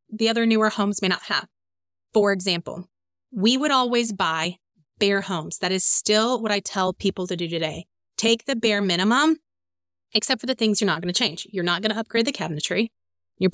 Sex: female